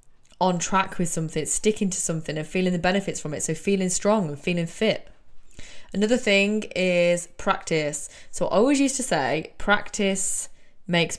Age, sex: 20-39, female